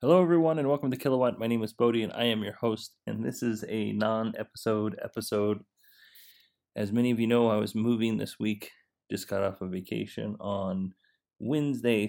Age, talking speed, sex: 30-49, 195 wpm, male